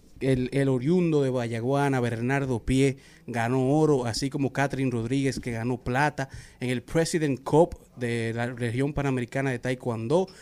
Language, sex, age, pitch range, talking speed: Spanish, male, 30-49, 120-140 Hz, 150 wpm